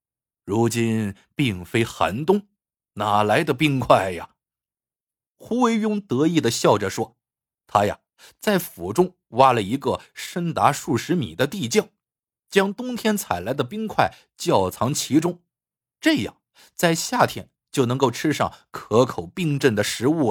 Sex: male